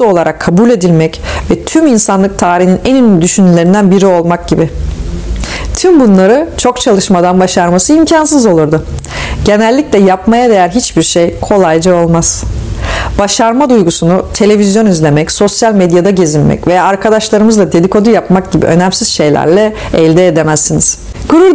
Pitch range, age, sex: 170-225 Hz, 40-59, female